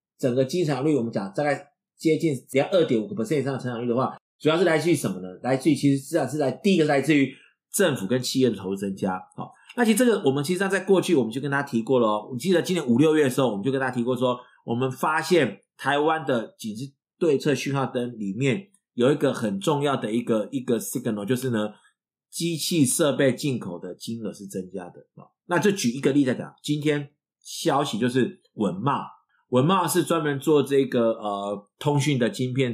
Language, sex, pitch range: Chinese, male, 120-155 Hz